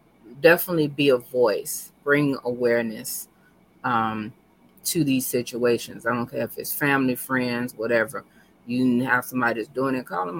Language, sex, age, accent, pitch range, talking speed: English, female, 20-39, American, 120-140 Hz, 150 wpm